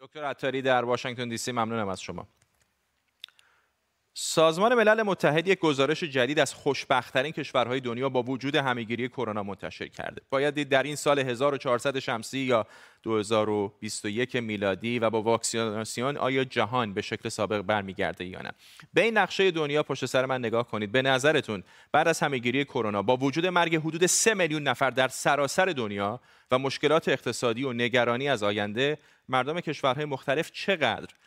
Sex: male